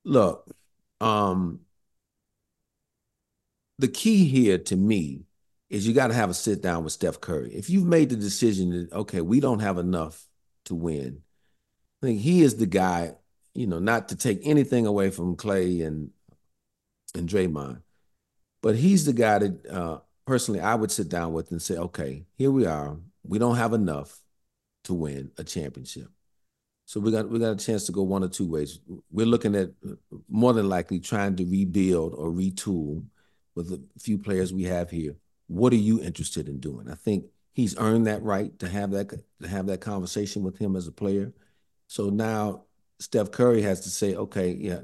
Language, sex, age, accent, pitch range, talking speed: English, male, 40-59, American, 80-105 Hz, 185 wpm